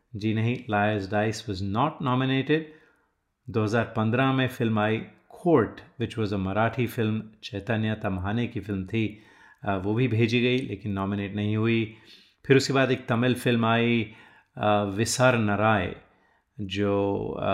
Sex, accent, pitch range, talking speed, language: male, native, 105-130 Hz, 135 wpm, Hindi